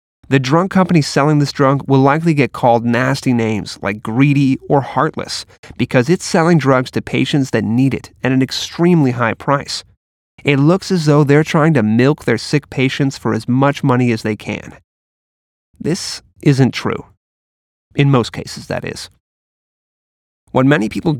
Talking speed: 165 wpm